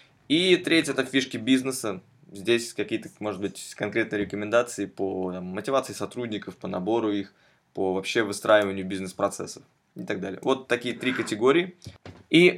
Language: Russian